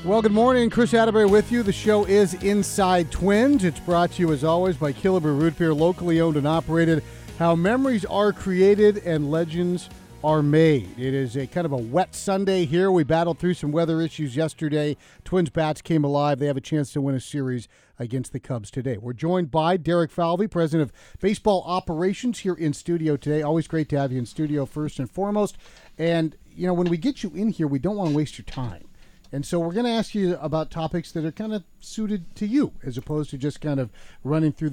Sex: male